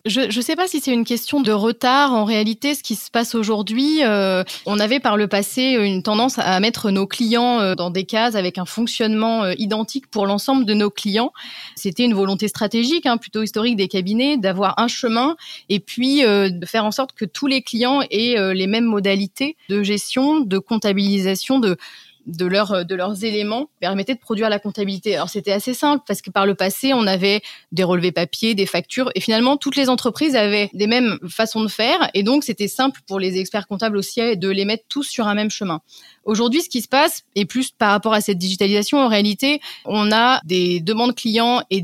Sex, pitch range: female, 200-255 Hz